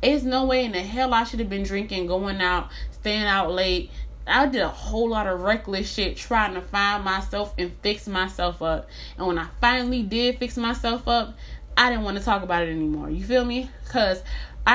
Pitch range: 195-265 Hz